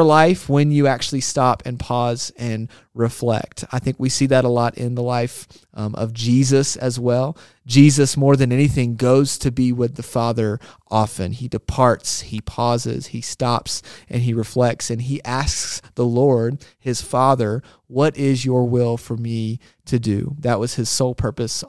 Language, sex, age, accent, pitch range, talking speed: English, male, 30-49, American, 115-135 Hz, 175 wpm